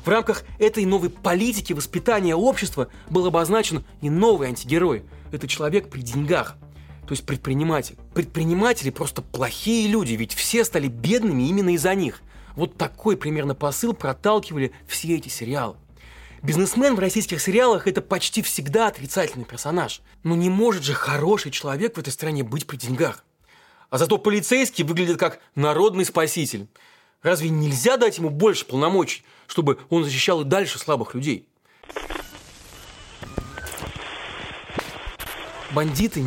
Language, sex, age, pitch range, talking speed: Russian, male, 30-49, 140-200 Hz, 130 wpm